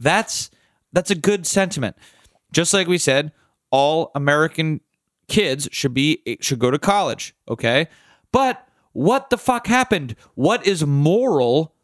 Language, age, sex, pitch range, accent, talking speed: English, 30-49, male, 155-215 Hz, American, 135 wpm